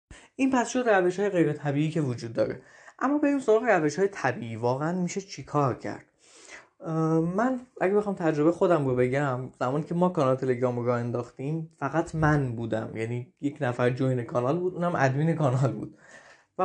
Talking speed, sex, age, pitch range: 170 wpm, male, 20-39, 130-180 Hz